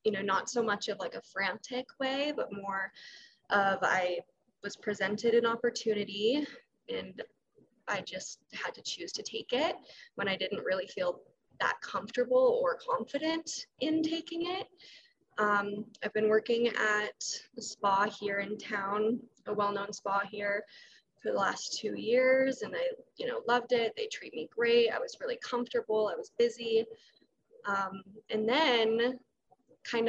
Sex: female